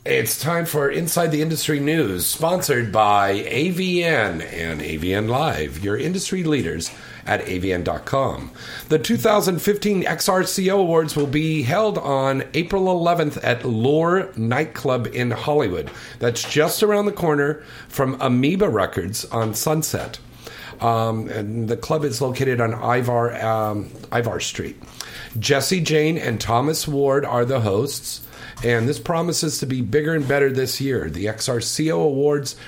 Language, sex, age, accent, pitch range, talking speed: English, male, 50-69, American, 115-150 Hz, 140 wpm